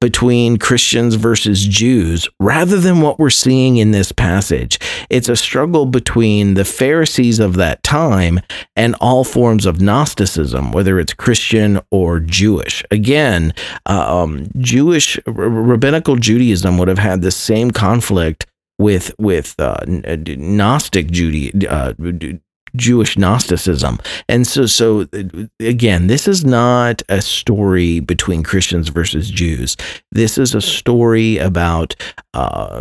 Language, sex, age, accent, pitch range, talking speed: English, male, 40-59, American, 90-125 Hz, 130 wpm